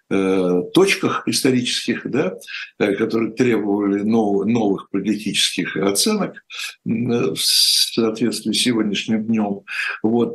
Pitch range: 100-125 Hz